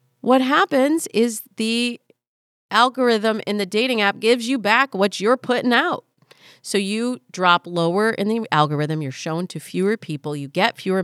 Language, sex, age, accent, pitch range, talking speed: English, female, 40-59, American, 165-235 Hz, 170 wpm